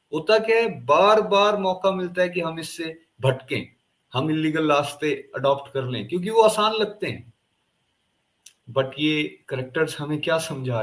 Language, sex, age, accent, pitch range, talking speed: Hindi, male, 30-49, native, 120-170 Hz, 160 wpm